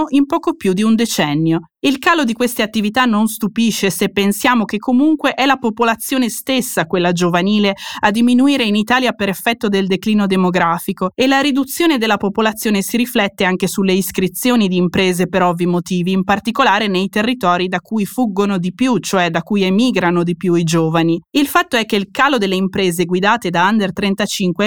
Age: 20-39